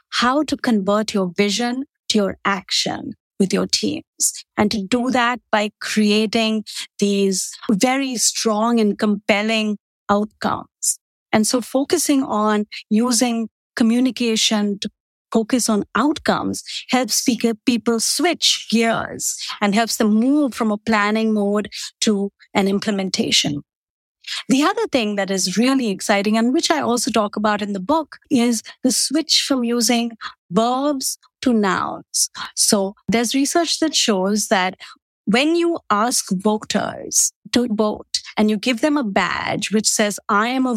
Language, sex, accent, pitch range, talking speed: English, female, Indian, 210-255 Hz, 140 wpm